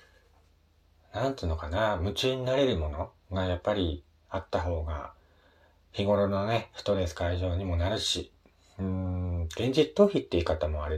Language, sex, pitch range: Japanese, male, 80-100 Hz